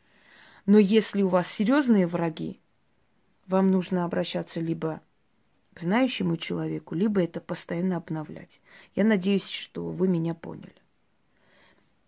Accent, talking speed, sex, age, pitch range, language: native, 115 wpm, female, 30-49, 165-200 Hz, Russian